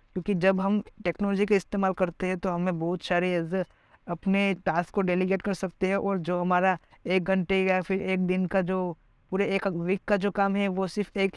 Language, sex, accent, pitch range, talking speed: Hindi, female, native, 175-195 Hz, 220 wpm